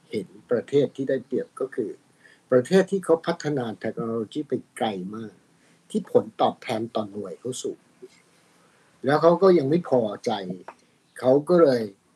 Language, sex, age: Thai, male, 60-79